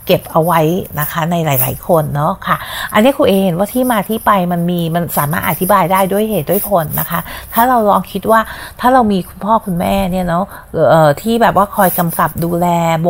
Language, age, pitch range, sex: Thai, 30-49, 165-210 Hz, female